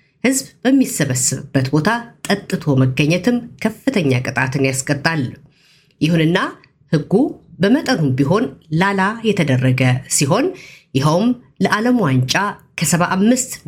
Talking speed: 85 wpm